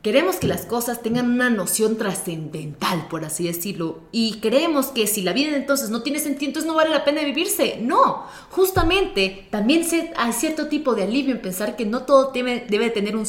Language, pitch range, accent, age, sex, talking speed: Spanish, 195-285 Hz, Mexican, 30-49, female, 205 wpm